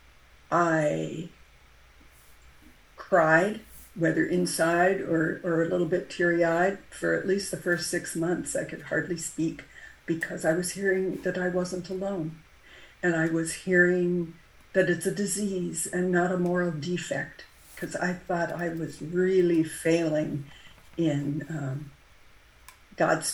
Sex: female